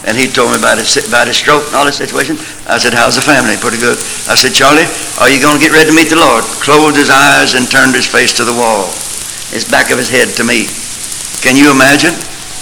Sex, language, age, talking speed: male, English, 60-79, 245 wpm